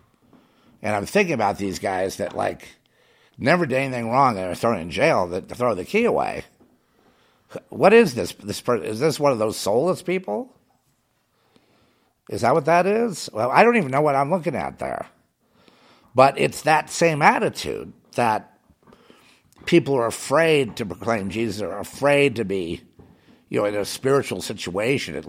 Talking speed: 170 wpm